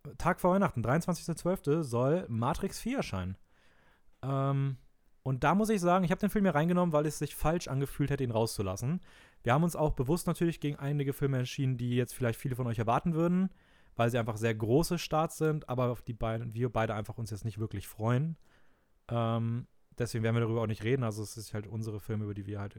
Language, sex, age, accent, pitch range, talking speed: German, male, 30-49, German, 115-155 Hz, 215 wpm